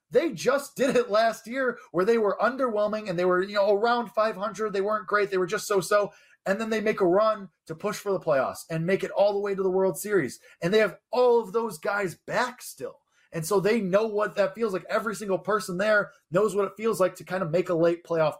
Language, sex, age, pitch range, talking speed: English, male, 20-39, 160-200 Hz, 255 wpm